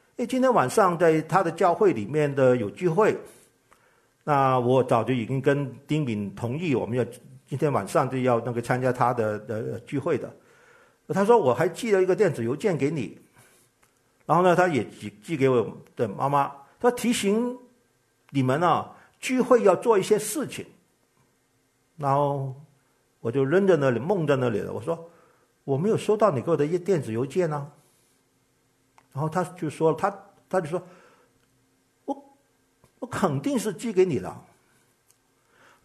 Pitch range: 125-185 Hz